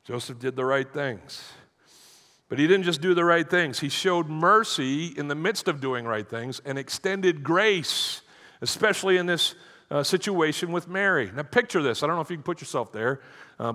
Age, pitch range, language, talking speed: 50-69, 135-190 Hz, English, 200 wpm